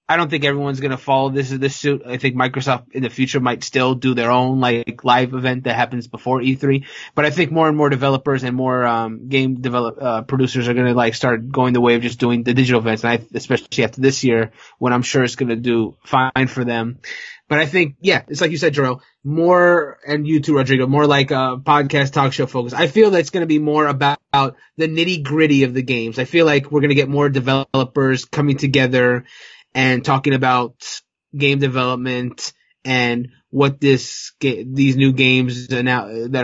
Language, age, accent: English, 20-39, American